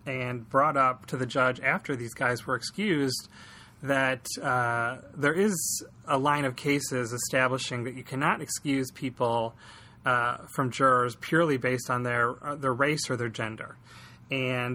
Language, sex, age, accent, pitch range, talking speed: English, male, 30-49, American, 120-135 Hz, 160 wpm